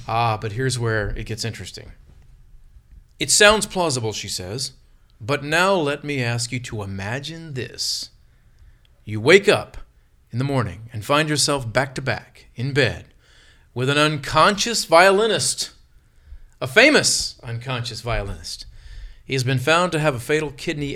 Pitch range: 115-150 Hz